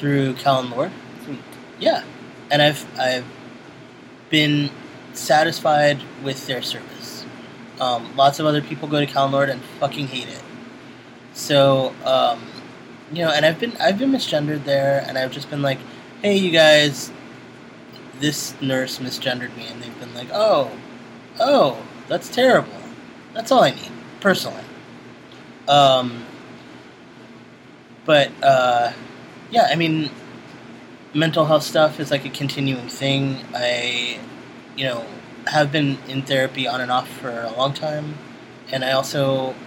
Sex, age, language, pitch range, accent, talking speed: male, 20-39, English, 125-145 Hz, American, 140 wpm